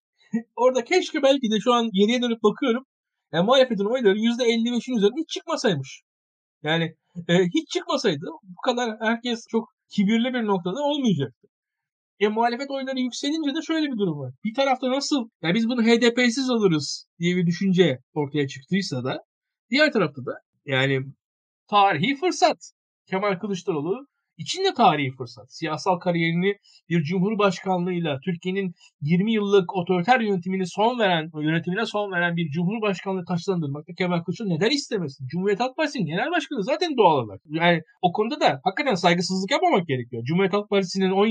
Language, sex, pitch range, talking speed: Turkish, male, 170-240 Hz, 150 wpm